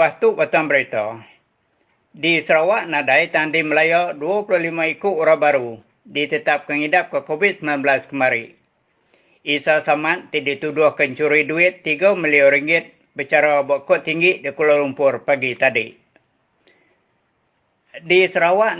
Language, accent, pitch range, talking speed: English, Indonesian, 145-170 Hz, 110 wpm